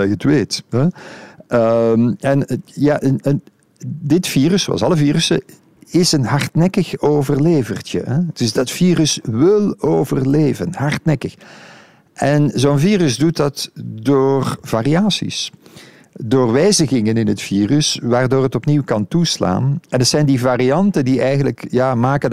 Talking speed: 140 wpm